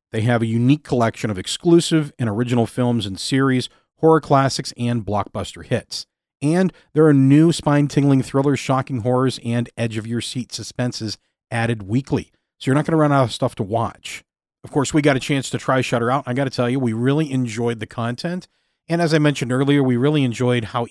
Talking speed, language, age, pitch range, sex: 200 wpm, English, 40-59, 115-140 Hz, male